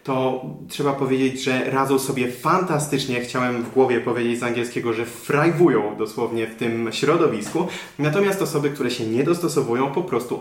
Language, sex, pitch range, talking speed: Polish, male, 120-150 Hz, 155 wpm